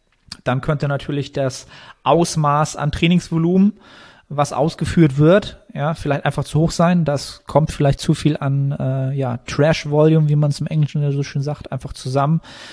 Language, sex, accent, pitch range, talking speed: German, male, German, 135-155 Hz, 165 wpm